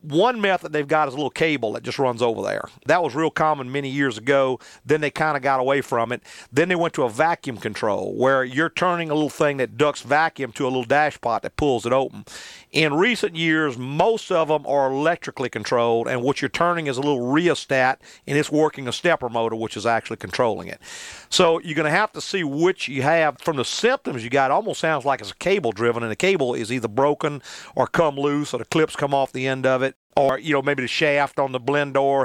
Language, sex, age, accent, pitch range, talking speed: English, male, 40-59, American, 130-160 Hz, 245 wpm